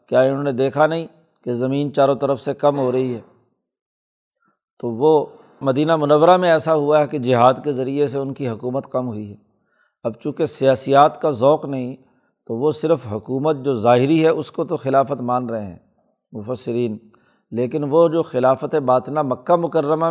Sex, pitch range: male, 130-160 Hz